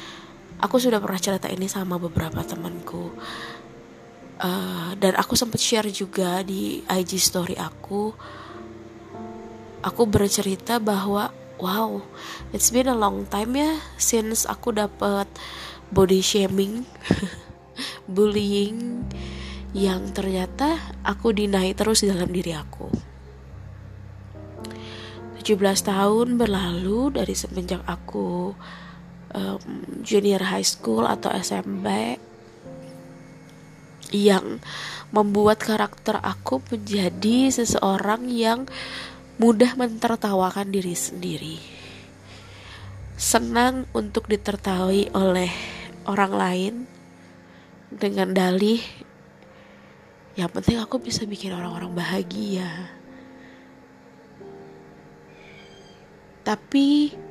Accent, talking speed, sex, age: native, 85 wpm, female, 20-39